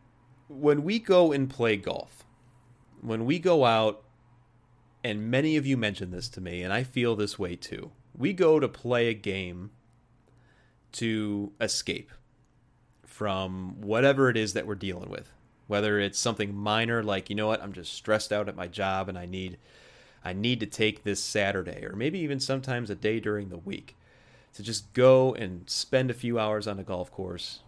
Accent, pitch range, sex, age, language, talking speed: American, 100-125 Hz, male, 30-49, English, 185 wpm